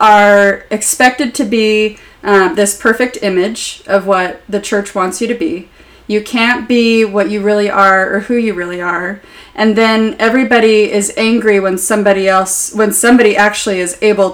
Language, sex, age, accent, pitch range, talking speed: English, female, 30-49, American, 200-235 Hz, 170 wpm